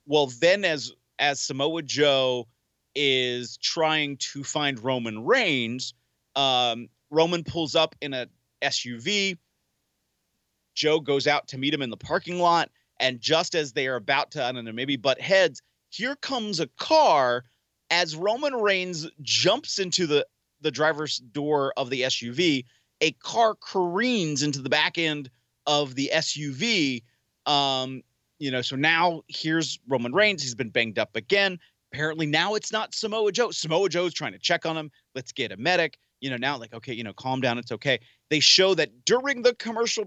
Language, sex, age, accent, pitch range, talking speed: English, male, 30-49, American, 130-170 Hz, 170 wpm